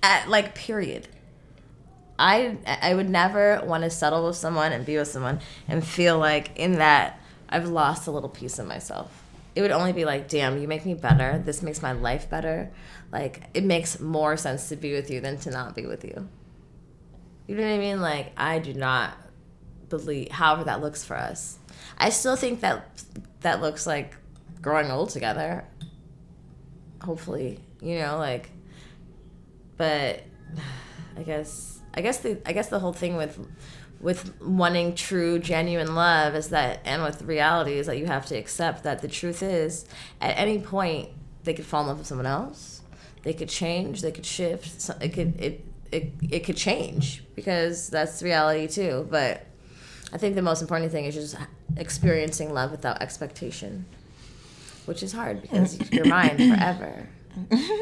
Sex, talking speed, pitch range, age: female, 170 wpm, 150-175 Hz, 20-39